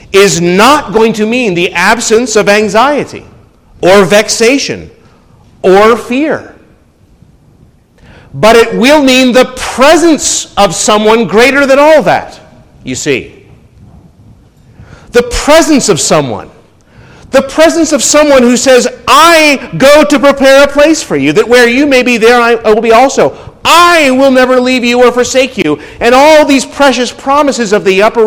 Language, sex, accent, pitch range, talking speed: English, male, American, 210-275 Hz, 150 wpm